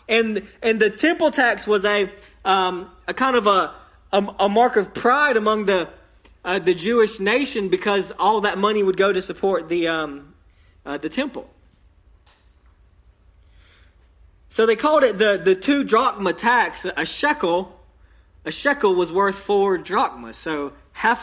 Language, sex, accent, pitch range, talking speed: English, male, American, 135-205 Hz, 155 wpm